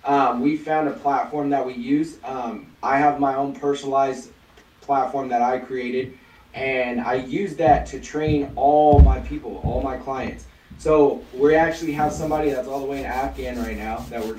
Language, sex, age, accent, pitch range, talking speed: English, male, 20-39, American, 130-150 Hz, 190 wpm